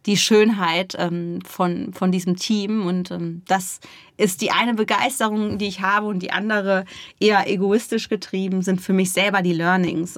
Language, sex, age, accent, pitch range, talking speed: German, female, 30-49, German, 185-215 Hz, 160 wpm